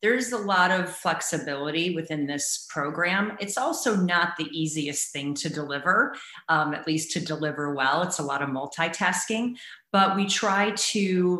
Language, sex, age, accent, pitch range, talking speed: English, female, 40-59, American, 155-185 Hz, 165 wpm